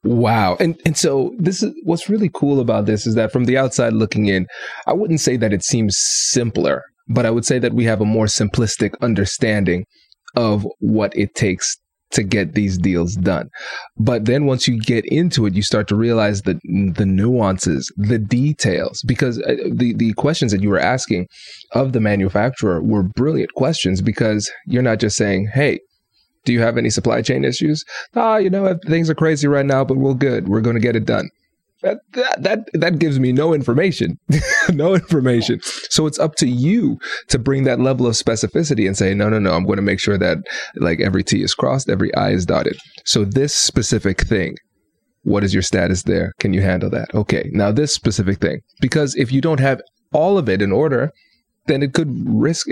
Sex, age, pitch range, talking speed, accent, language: male, 20-39, 105-140 Hz, 205 wpm, American, English